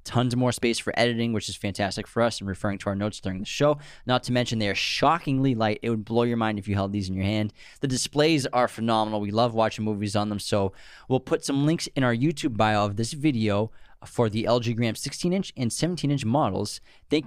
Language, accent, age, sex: English, American, 20-39, male